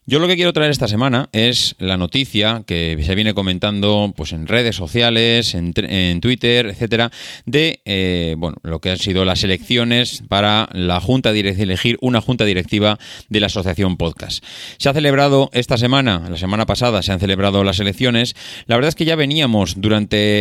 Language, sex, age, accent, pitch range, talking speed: Spanish, male, 30-49, Spanish, 100-120 Hz, 180 wpm